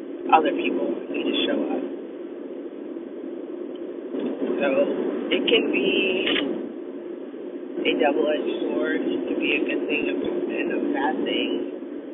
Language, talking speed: English, 115 wpm